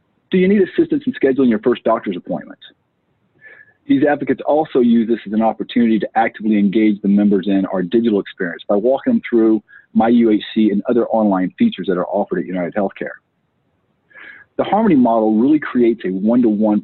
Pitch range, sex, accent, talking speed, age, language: 105-150 Hz, male, American, 175 wpm, 40-59, English